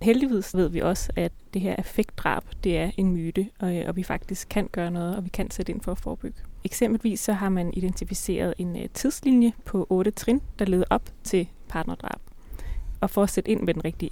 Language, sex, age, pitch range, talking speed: Danish, female, 20-39, 180-210 Hz, 210 wpm